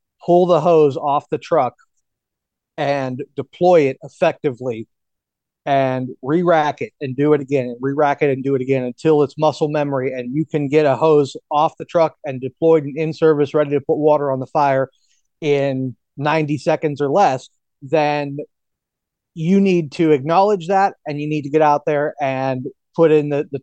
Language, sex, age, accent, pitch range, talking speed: English, male, 30-49, American, 130-155 Hz, 180 wpm